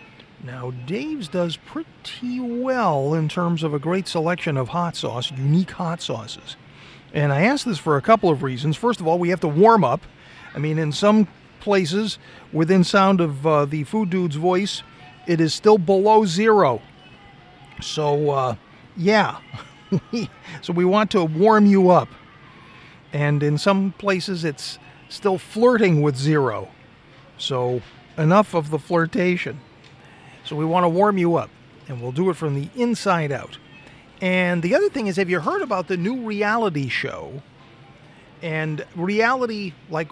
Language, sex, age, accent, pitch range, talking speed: English, male, 40-59, American, 140-185 Hz, 160 wpm